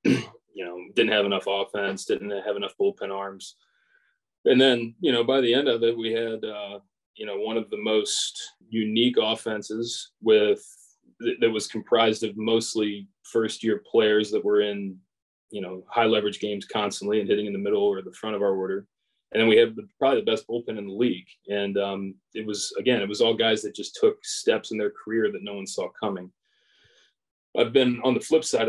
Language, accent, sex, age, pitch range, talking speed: English, American, male, 20-39, 100-155 Hz, 205 wpm